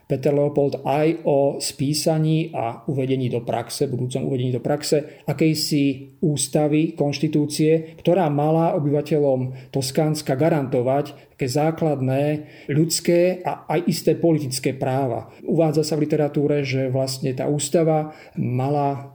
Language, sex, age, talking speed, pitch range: Slovak, male, 40-59, 120 wpm, 135-155 Hz